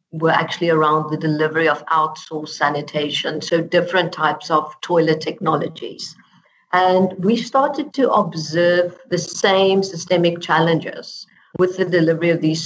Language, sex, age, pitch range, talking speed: English, female, 50-69, 155-180 Hz, 135 wpm